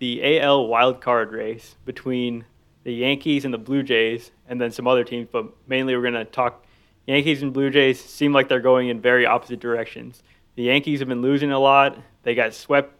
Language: English